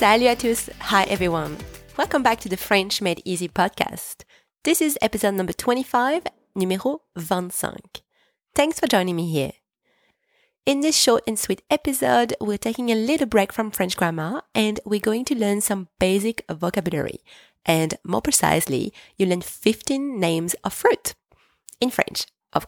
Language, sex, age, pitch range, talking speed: English, female, 30-49, 180-245 Hz, 155 wpm